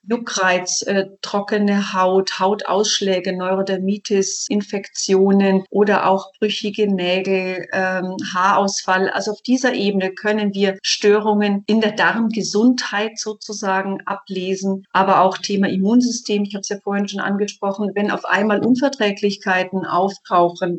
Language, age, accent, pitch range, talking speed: German, 40-59, German, 190-215 Hz, 120 wpm